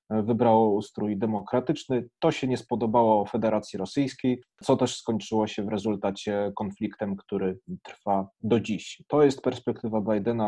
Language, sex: Polish, male